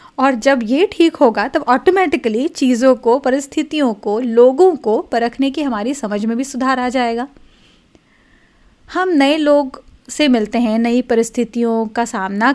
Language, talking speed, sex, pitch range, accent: Hindi, 155 wpm, female, 230-285 Hz, native